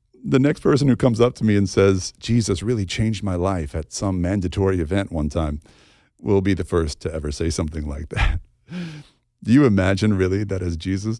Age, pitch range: 50-69, 85-115 Hz